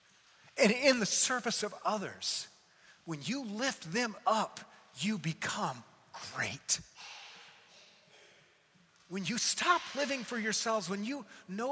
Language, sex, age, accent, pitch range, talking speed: English, male, 40-59, American, 145-210 Hz, 120 wpm